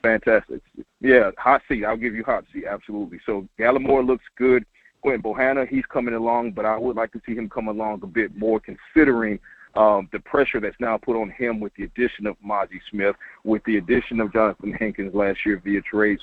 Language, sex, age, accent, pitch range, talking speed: English, male, 40-59, American, 105-130 Hz, 205 wpm